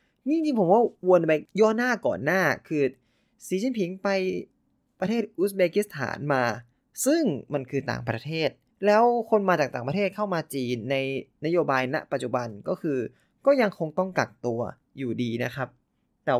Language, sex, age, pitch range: Thai, male, 20-39, 130-190 Hz